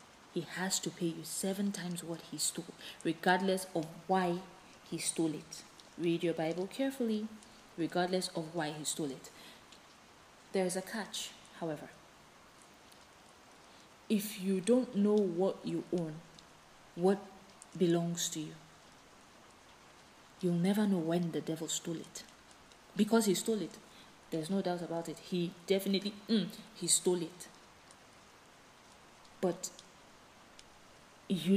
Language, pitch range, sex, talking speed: English, 170-200 Hz, female, 125 wpm